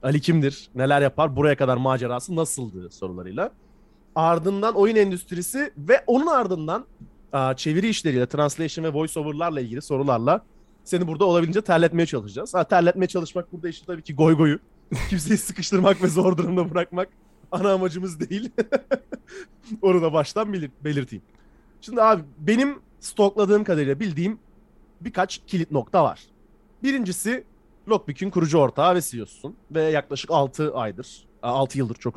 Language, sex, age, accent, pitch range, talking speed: Turkish, male, 30-49, native, 135-195 Hz, 135 wpm